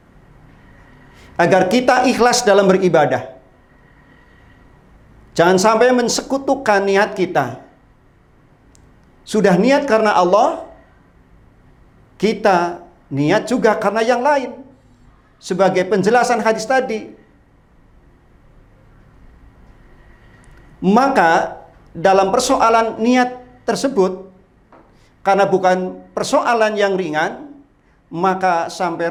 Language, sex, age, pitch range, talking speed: Indonesian, male, 50-69, 165-240 Hz, 75 wpm